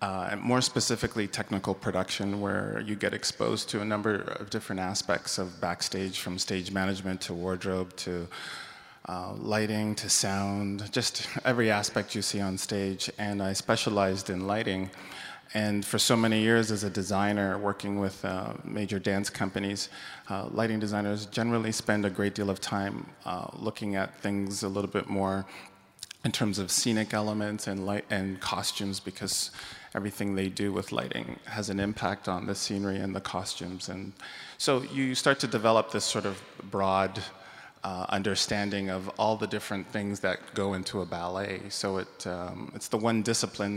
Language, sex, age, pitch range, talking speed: English, male, 30-49, 95-105 Hz, 170 wpm